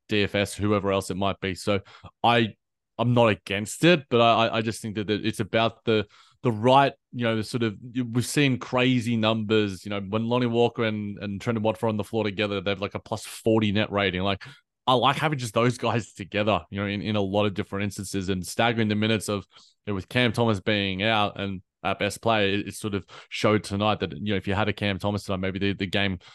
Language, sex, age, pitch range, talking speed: English, male, 20-39, 105-120 Hz, 240 wpm